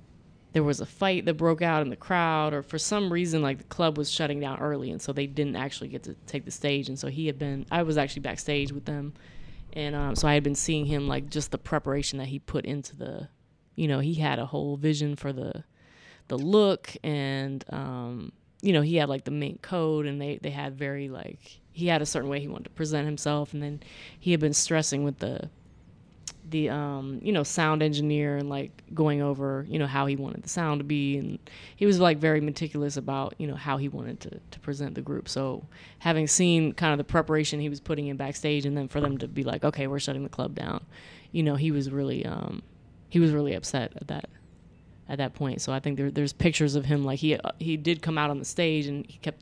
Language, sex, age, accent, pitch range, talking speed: English, female, 20-39, American, 140-155 Hz, 245 wpm